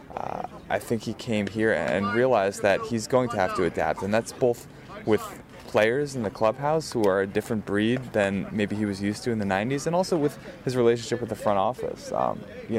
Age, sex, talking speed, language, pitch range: 20-39, male, 225 wpm, English, 100-120 Hz